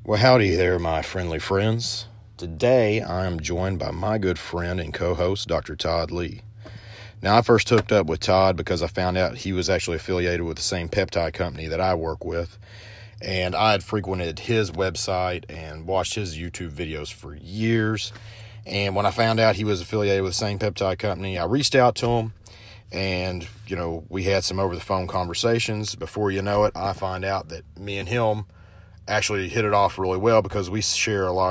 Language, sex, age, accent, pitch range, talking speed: English, male, 40-59, American, 90-110 Hz, 200 wpm